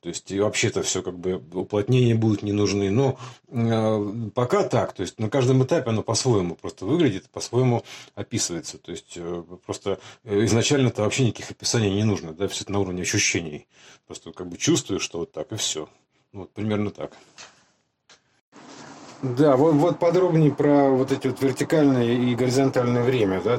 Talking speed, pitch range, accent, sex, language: 170 wpm, 100-135 Hz, native, male, Russian